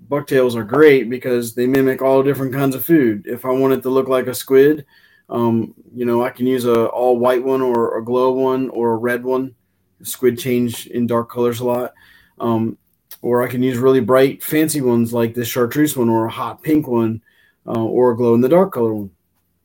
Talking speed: 210 wpm